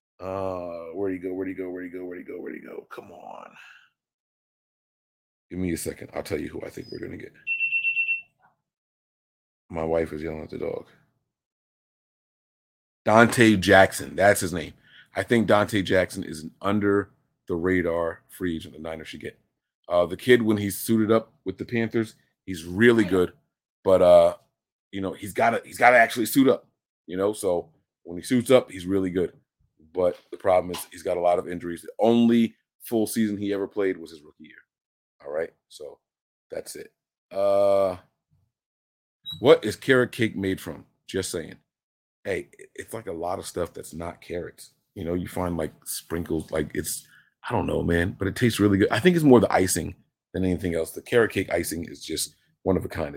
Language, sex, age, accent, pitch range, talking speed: English, male, 30-49, American, 90-120 Hz, 195 wpm